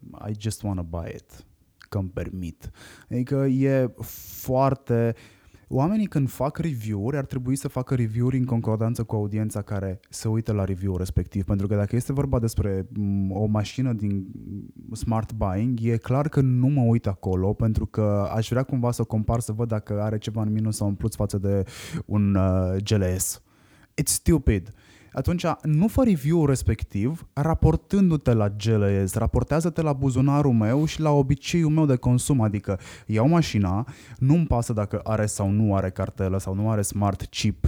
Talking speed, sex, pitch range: 170 wpm, male, 100-135 Hz